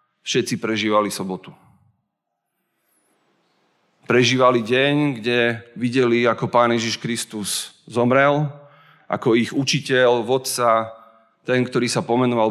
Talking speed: 95 wpm